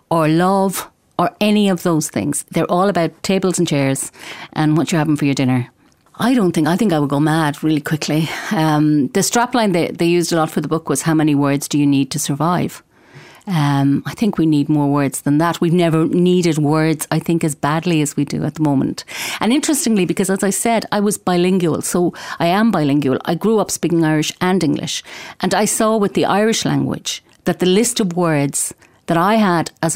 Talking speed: 220 wpm